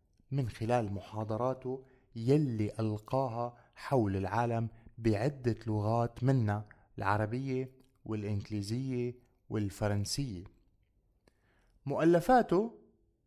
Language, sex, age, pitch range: Arabic, male, 30-49, 110-135 Hz